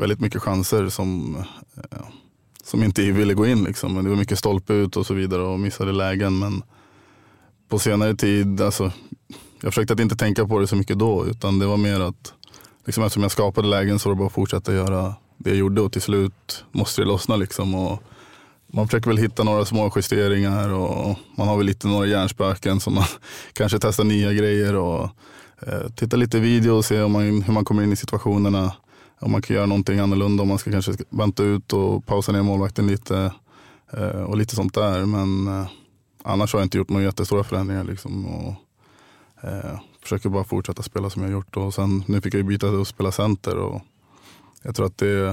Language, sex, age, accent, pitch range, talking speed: English, male, 20-39, Norwegian, 95-105 Hz, 200 wpm